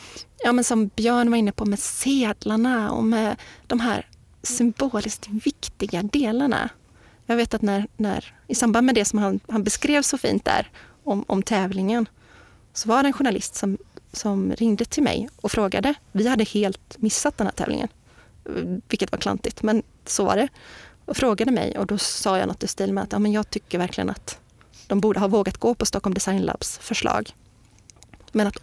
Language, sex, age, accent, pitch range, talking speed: Swedish, female, 30-49, native, 205-245 Hz, 190 wpm